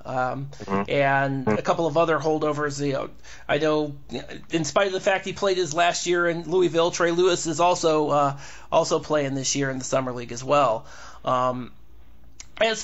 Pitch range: 145-180 Hz